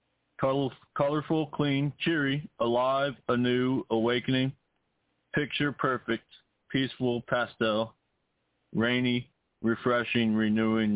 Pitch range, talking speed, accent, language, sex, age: 115-135 Hz, 65 wpm, American, English, male, 30-49